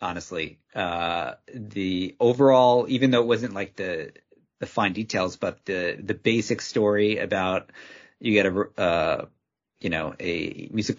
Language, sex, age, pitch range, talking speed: English, male, 30-49, 85-105 Hz, 150 wpm